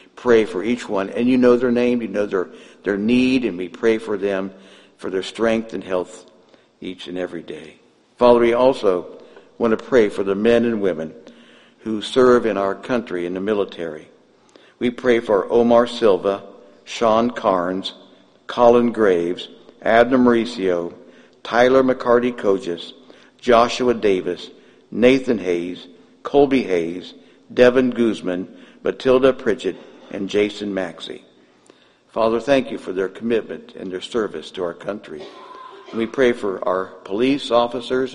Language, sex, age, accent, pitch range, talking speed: English, male, 60-79, American, 95-125 Hz, 145 wpm